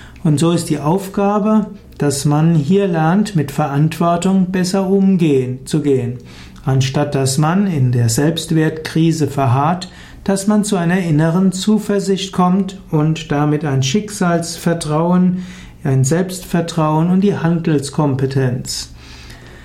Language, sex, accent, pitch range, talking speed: German, male, German, 145-180 Hz, 110 wpm